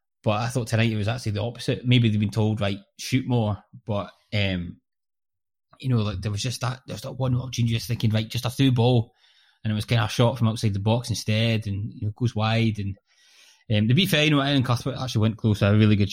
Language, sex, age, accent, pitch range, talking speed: English, male, 20-39, British, 100-120 Hz, 255 wpm